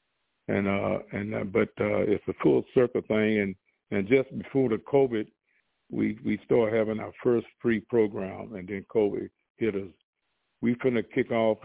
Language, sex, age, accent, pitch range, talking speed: English, male, 60-79, American, 105-115 Hz, 175 wpm